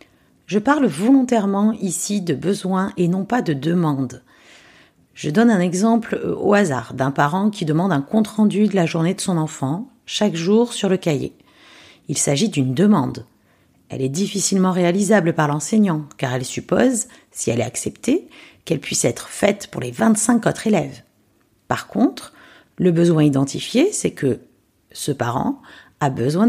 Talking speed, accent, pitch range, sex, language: 160 wpm, French, 155-220 Hz, female, French